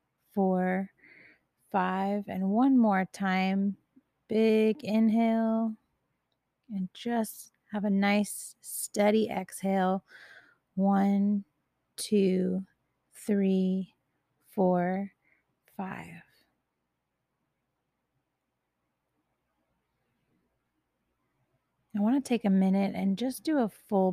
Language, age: English, 30-49